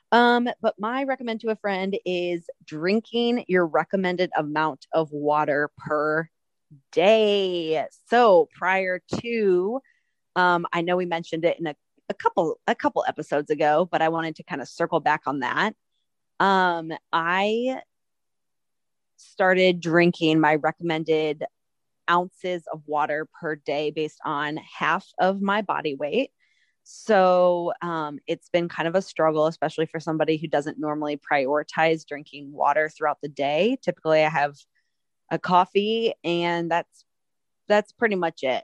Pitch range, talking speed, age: 155-185 Hz, 145 wpm, 30-49